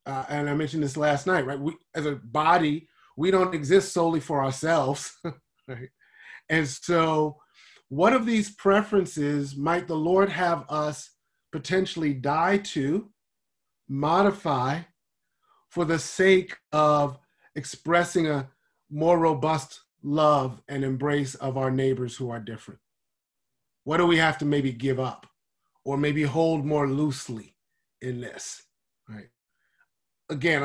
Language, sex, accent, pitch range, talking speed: English, male, American, 140-180 Hz, 130 wpm